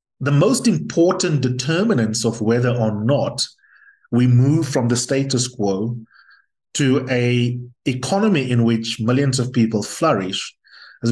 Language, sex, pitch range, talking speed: English, male, 115-135 Hz, 130 wpm